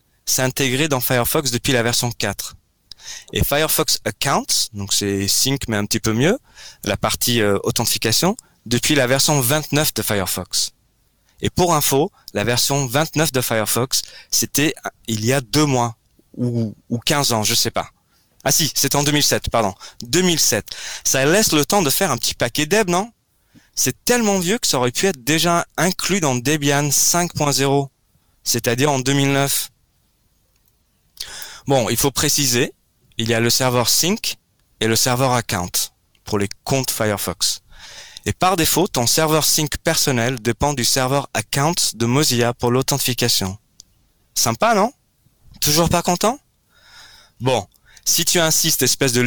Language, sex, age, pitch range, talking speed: French, male, 20-39, 115-150 Hz, 155 wpm